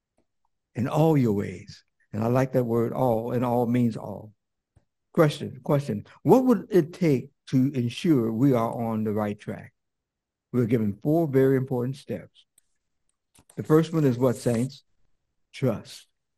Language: English